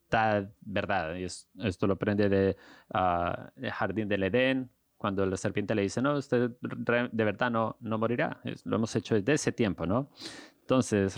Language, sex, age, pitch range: English, male, 30-49, 95-115 Hz